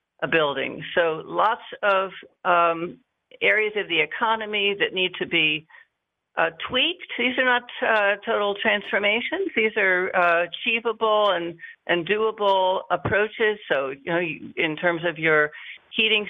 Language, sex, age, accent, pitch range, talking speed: English, female, 60-79, American, 170-225 Hz, 145 wpm